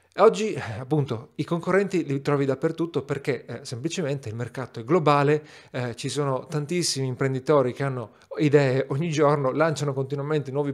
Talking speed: 150 wpm